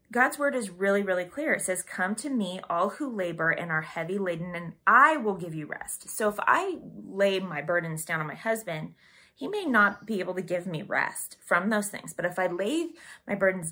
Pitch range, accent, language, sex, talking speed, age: 170-205 Hz, American, English, female, 230 wpm, 20-39